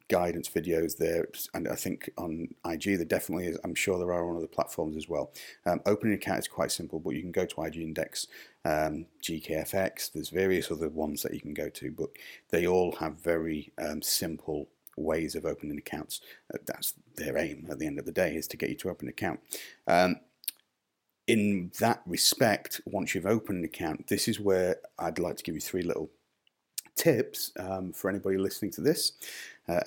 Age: 40-59